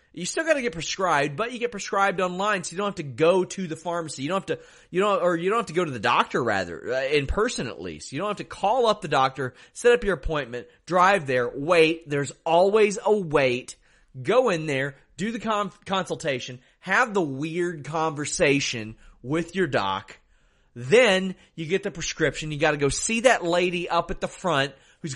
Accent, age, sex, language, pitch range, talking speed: American, 30-49, male, English, 160-225 Hz, 215 wpm